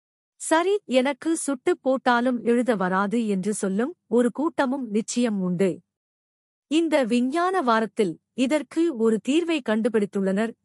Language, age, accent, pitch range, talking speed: Tamil, 50-69, native, 205-285 Hz, 105 wpm